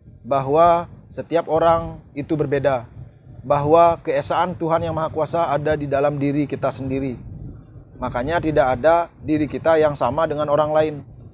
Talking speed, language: 145 wpm, Indonesian